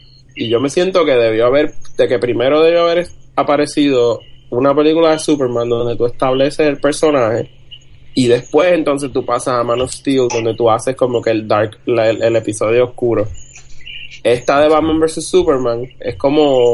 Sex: male